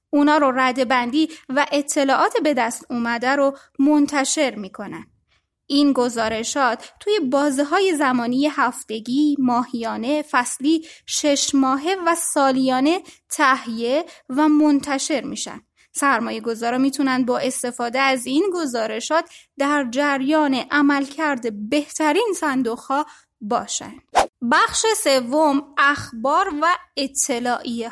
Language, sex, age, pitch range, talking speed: Persian, female, 20-39, 255-315 Hz, 105 wpm